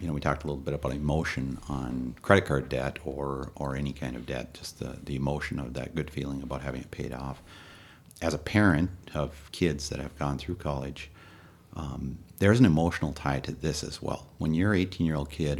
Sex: male